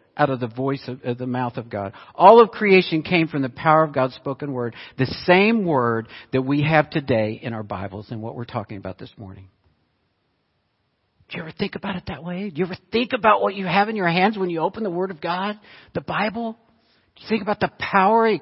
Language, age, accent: English, 50-69, American